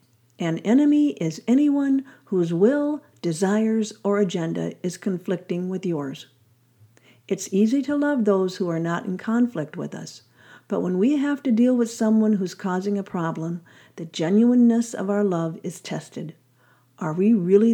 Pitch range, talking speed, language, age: 165-230 Hz, 160 wpm, English, 50-69